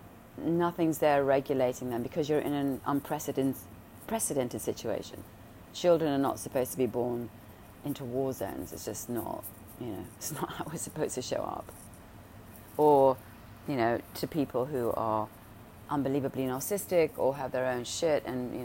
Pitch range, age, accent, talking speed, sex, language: 110-145 Hz, 30-49, British, 160 wpm, female, English